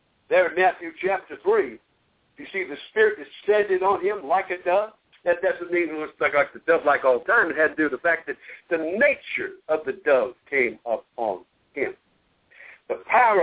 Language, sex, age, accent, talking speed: English, male, 60-79, American, 200 wpm